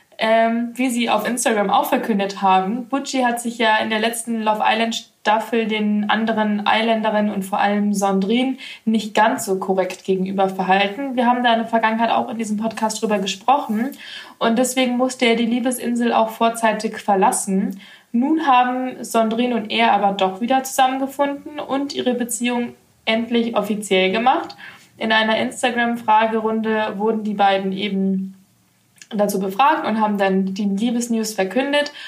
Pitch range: 200-235 Hz